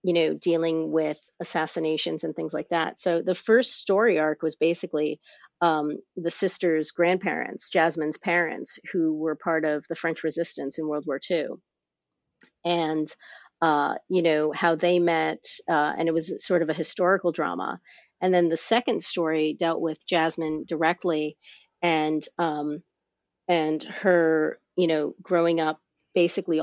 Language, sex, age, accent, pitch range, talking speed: English, female, 30-49, American, 155-175 Hz, 150 wpm